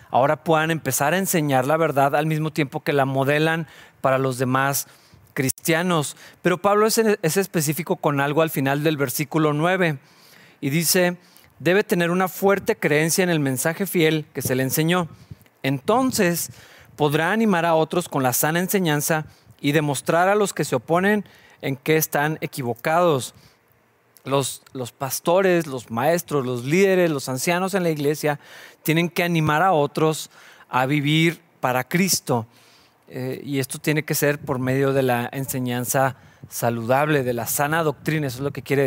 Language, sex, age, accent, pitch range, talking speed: Spanish, male, 40-59, Mexican, 135-170 Hz, 165 wpm